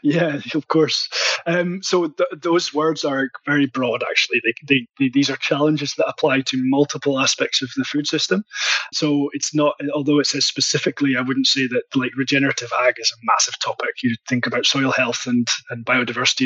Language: English